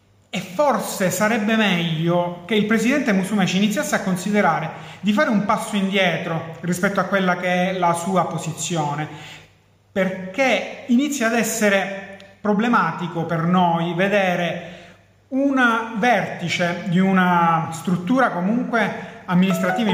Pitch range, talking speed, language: 175-205 Hz, 115 wpm, Italian